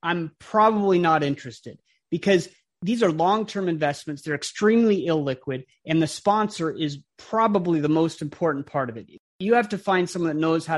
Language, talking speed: English, 175 wpm